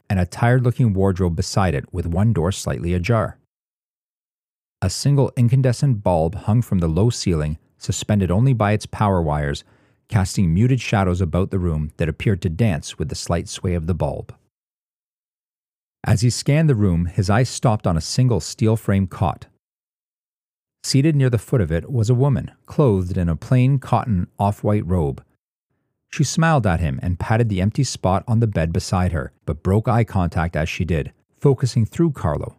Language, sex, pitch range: English, male, 90-120 Hz